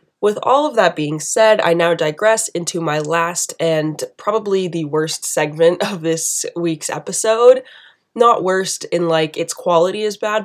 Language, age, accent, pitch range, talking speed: English, 20-39, American, 160-190 Hz, 165 wpm